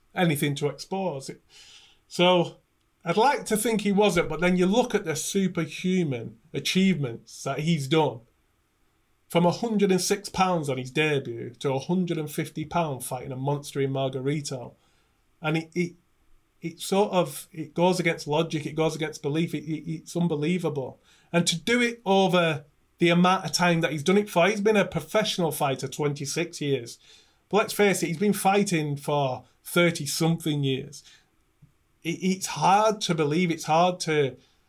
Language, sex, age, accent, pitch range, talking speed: English, male, 30-49, British, 150-185 Hz, 160 wpm